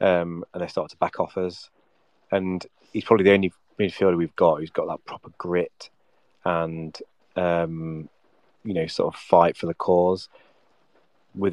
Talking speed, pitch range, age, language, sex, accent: 165 wpm, 85-95 Hz, 30-49, English, male, British